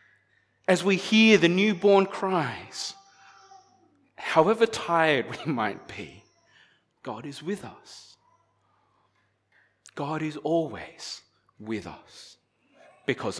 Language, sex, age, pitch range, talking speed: English, male, 30-49, 105-175 Hz, 95 wpm